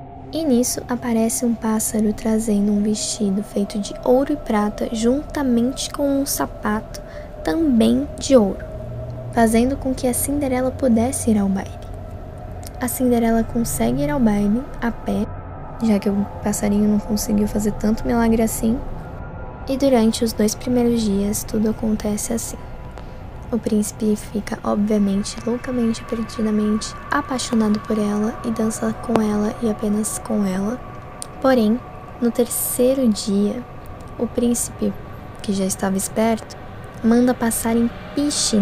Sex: female